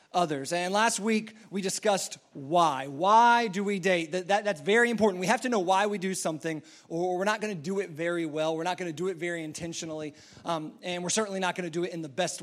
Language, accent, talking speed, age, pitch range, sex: English, American, 255 wpm, 30-49, 180-230 Hz, male